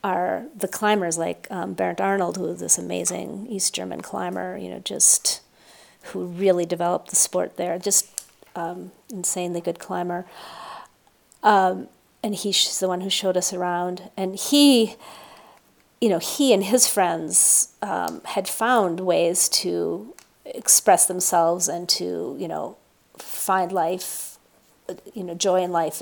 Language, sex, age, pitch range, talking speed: English, female, 40-59, 170-200 Hz, 145 wpm